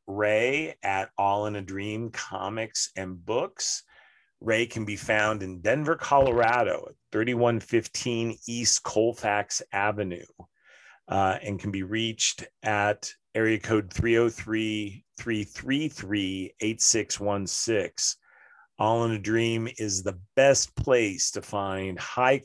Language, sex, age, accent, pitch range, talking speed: English, male, 40-59, American, 95-110 Hz, 110 wpm